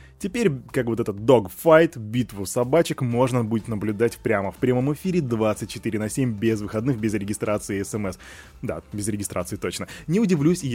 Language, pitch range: Russian, 100-135 Hz